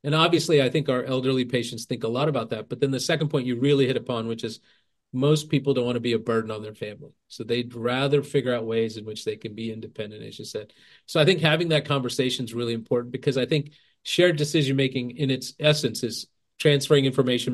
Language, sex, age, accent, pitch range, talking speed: English, male, 40-59, American, 120-145 Hz, 240 wpm